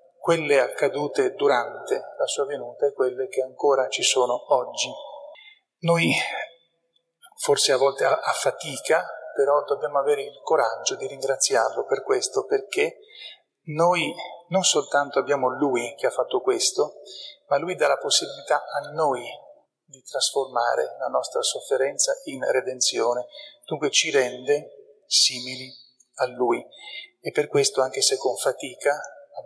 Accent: native